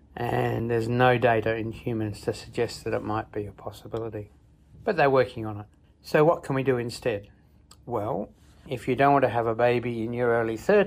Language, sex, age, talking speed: English, male, 60-79, 205 wpm